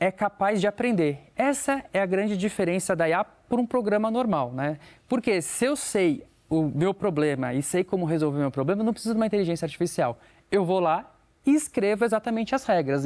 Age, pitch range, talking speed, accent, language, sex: 20-39, 150-205 Hz, 200 wpm, Brazilian, Portuguese, male